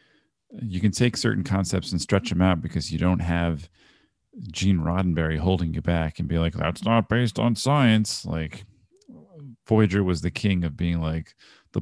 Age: 40-59